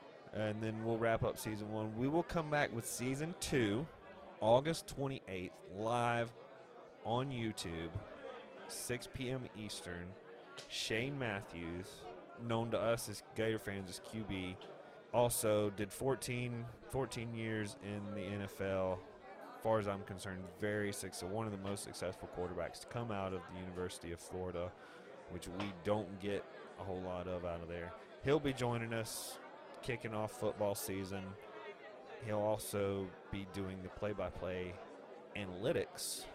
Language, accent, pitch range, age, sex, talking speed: English, American, 95-115 Hz, 30-49, male, 145 wpm